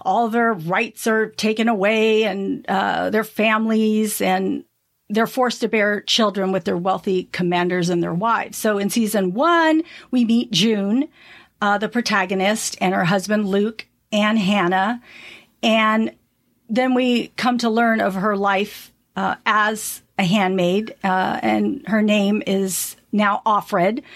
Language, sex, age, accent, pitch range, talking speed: English, female, 50-69, American, 205-250 Hz, 145 wpm